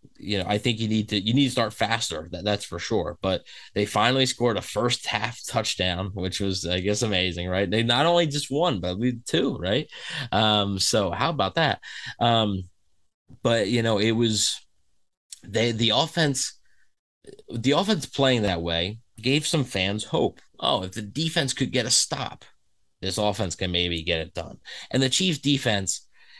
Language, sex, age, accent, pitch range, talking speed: English, male, 20-39, American, 95-125 Hz, 185 wpm